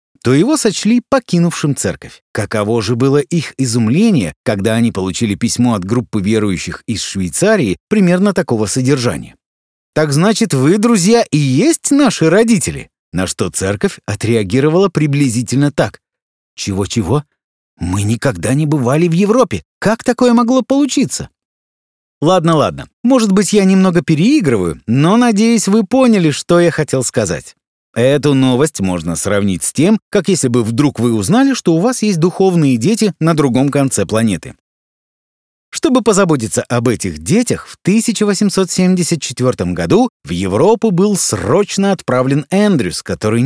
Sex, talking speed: male, 135 wpm